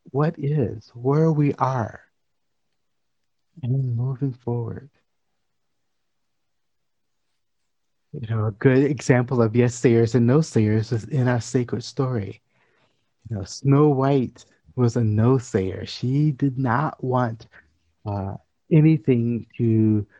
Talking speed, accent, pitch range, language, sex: 110 wpm, American, 115-135 Hz, English, male